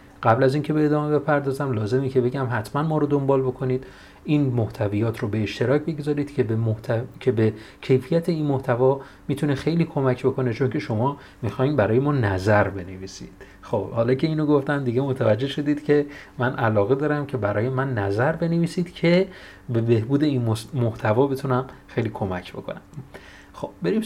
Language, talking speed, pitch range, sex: Persian, 170 wpm, 110-135 Hz, male